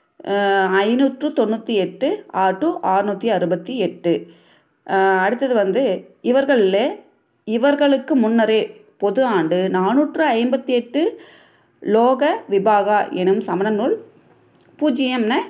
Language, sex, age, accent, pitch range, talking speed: Tamil, female, 30-49, native, 185-255 Hz, 75 wpm